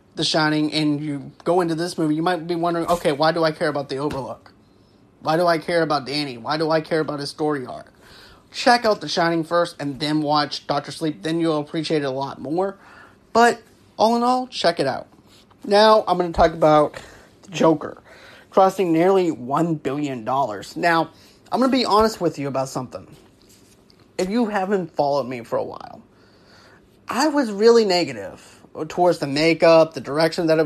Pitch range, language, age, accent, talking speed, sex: 150-185 Hz, English, 30-49, American, 195 wpm, male